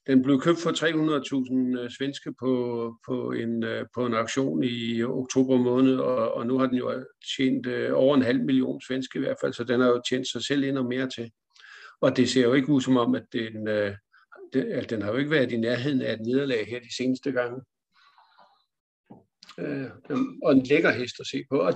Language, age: Danish, 60-79